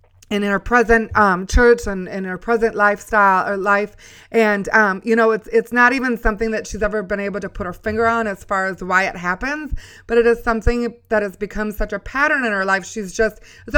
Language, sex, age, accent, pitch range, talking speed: English, female, 30-49, American, 195-230 Hz, 235 wpm